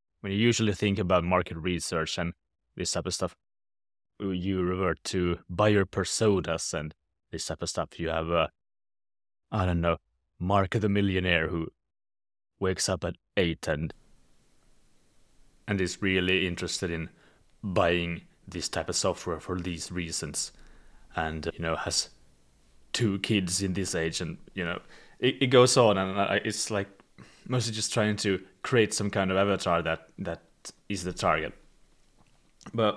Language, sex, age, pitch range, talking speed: English, male, 20-39, 85-105 Hz, 155 wpm